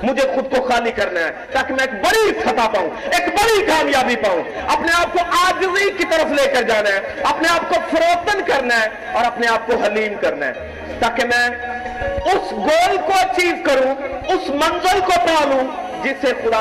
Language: Urdu